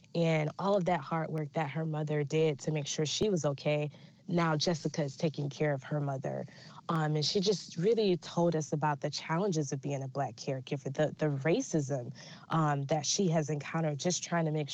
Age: 20-39